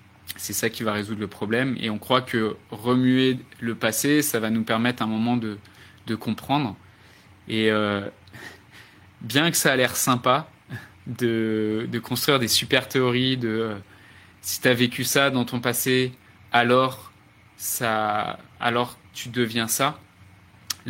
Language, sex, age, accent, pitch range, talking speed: French, male, 20-39, French, 105-125 Hz, 155 wpm